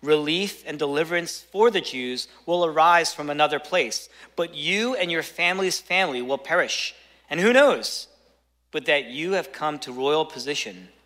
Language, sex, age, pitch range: English, male, 40-59, 115-160 Hz